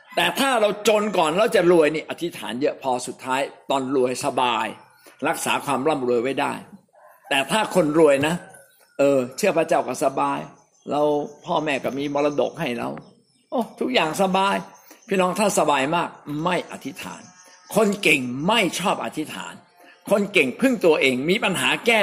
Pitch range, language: 130-180 Hz, Thai